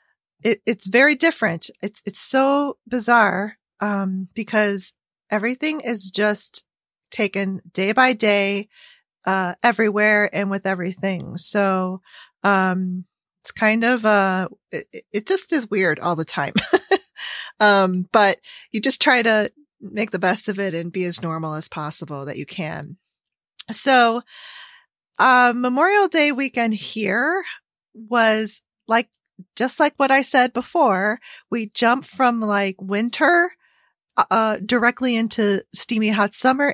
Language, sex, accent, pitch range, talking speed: English, female, American, 190-245 Hz, 130 wpm